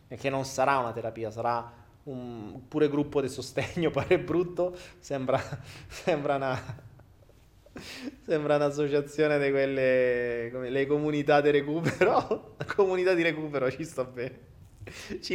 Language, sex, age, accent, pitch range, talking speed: Italian, male, 20-39, native, 125-160 Hz, 130 wpm